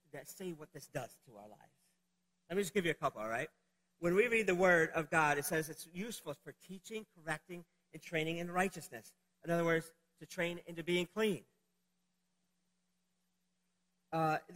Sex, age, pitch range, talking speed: male, 40-59, 170-200 Hz, 180 wpm